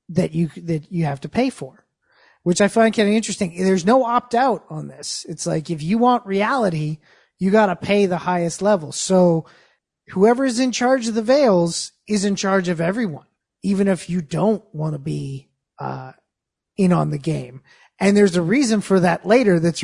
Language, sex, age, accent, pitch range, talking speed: English, male, 30-49, American, 160-195 Hz, 200 wpm